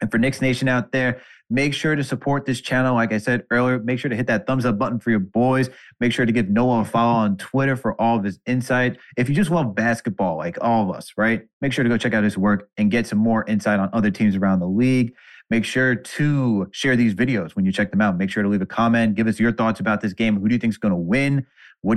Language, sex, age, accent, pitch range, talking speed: English, male, 30-49, American, 110-135 Hz, 280 wpm